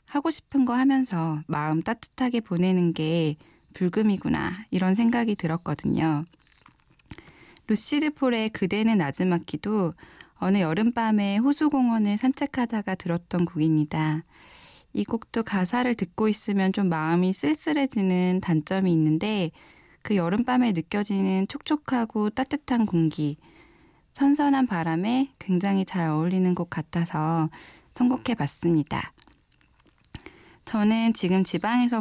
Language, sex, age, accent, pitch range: Korean, female, 10-29, native, 165-230 Hz